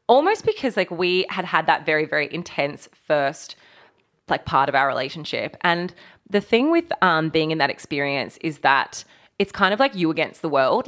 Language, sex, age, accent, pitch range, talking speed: English, female, 20-39, Australian, 150-185 Hz, 195 wpm